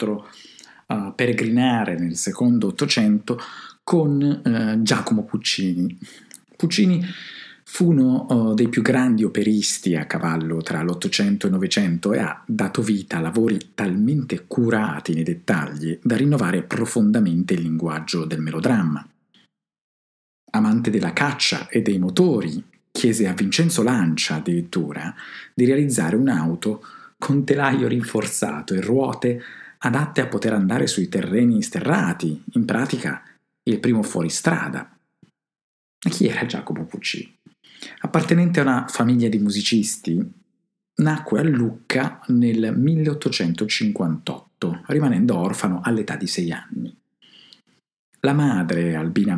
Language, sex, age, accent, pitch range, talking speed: Italian, male, 50-69, native, 95-150 Hz, 120 wpm